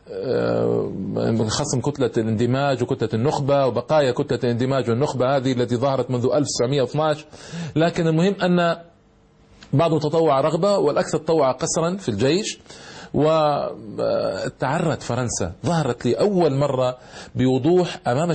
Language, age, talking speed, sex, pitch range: Arabic, 40-59, 110 wpm, male, 125-155 Hz